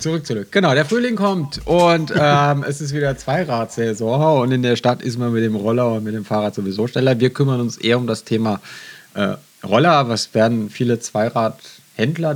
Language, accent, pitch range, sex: German, German, 110-140 Hz, male